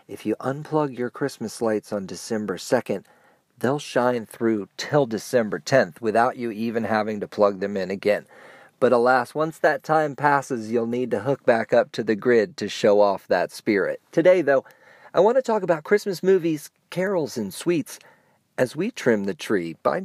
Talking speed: 185 wpm